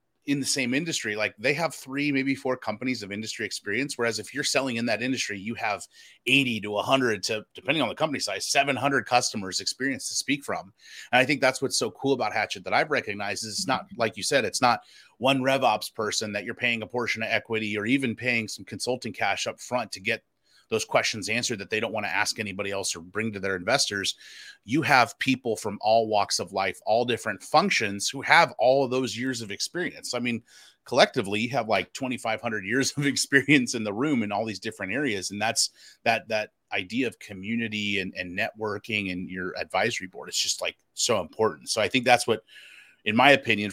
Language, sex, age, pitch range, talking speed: English, male, 30-49, 105-130 Hz, 220 wpm